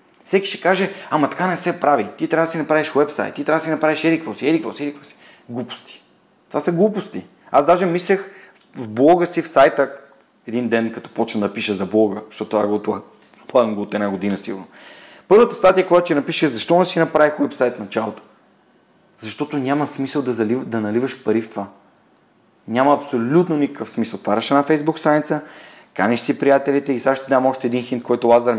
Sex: male